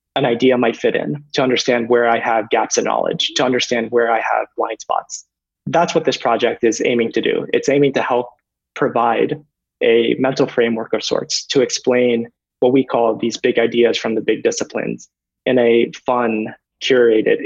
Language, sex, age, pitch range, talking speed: English, male, 20-39, 115-125 Hz, 185 wpm